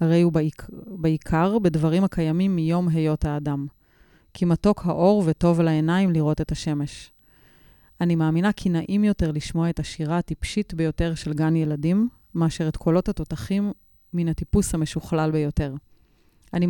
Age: 30-49